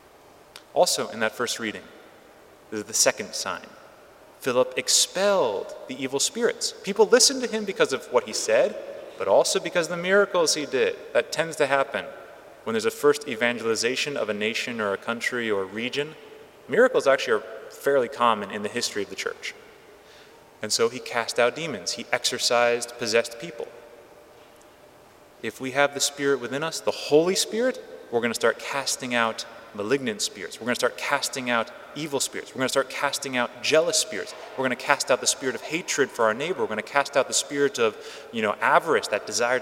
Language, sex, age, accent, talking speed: English, male, 30-49, American, 200 wpm